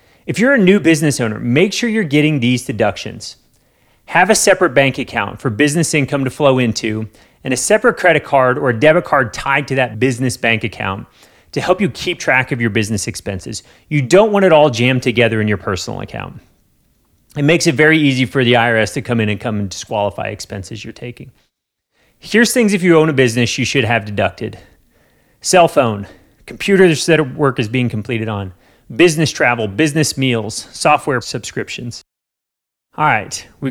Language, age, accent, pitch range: English, 30-49, American, 115-155 Hz